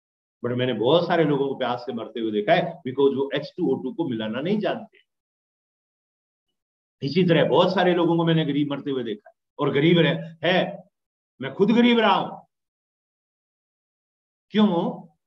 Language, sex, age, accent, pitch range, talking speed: Hindi, male, 50-69, native, 150-220 Hz, 155 wpm